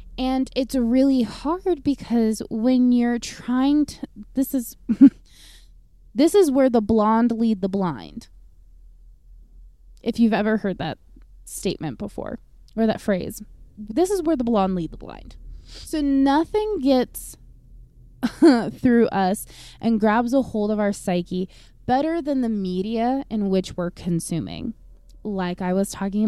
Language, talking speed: English, 140 wpm